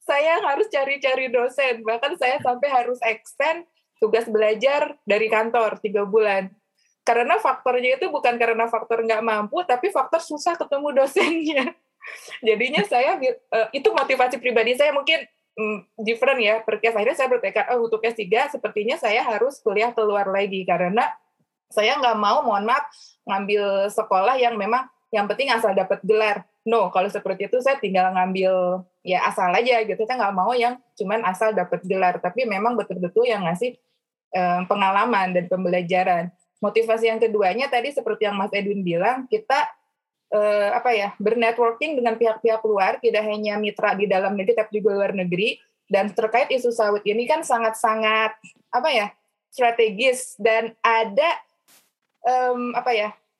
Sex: female